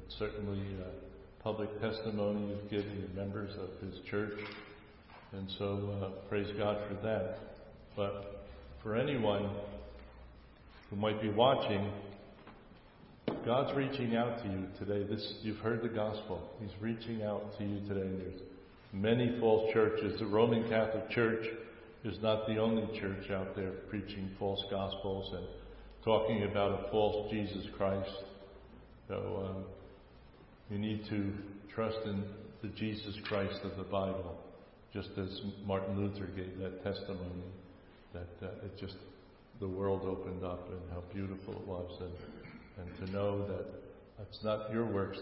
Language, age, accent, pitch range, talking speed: English, 50-69, American, 95-110 Hz, 145 wpm